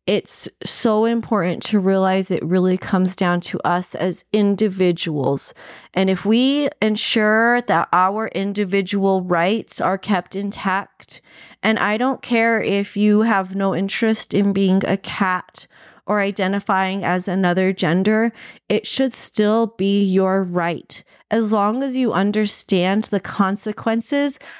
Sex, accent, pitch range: female, American, 185-220 Hz